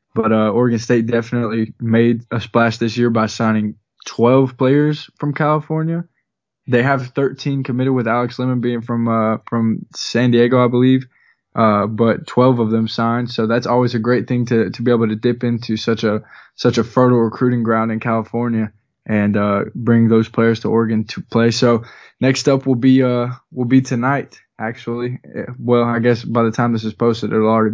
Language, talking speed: English, 195 wpm